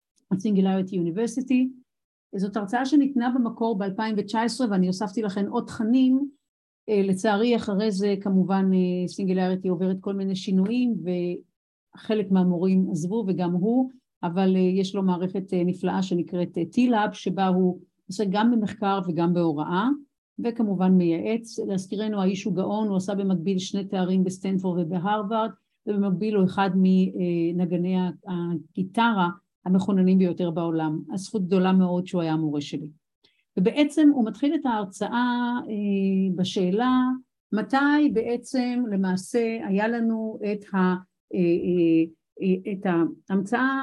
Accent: native